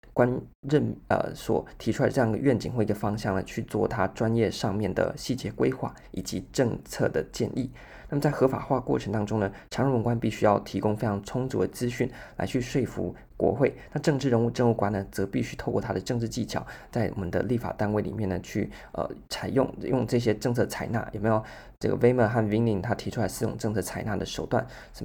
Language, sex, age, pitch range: Chinese, male, 20-39, 100-125 Hz